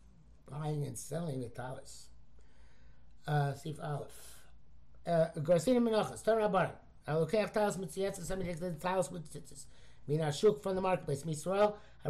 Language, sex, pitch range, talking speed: English, male, 155-215 Hz, 160 wpm